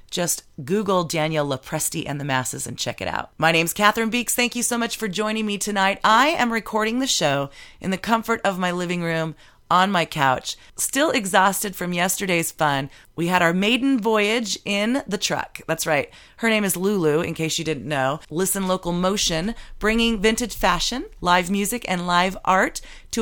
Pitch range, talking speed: 160-215 Hz, 190 wpm